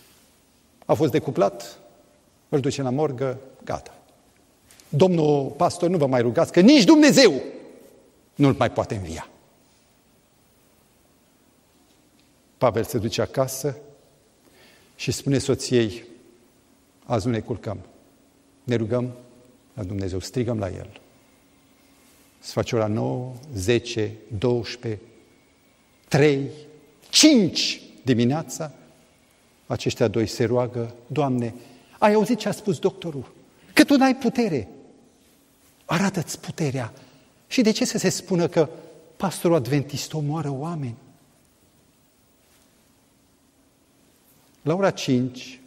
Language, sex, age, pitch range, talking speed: Romanian, male, 50-69, 120-185 Hz, 110 wpm